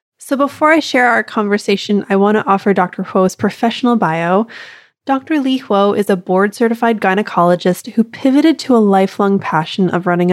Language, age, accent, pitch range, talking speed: English, 20-39, American, 180-230 Hz, 170 wpm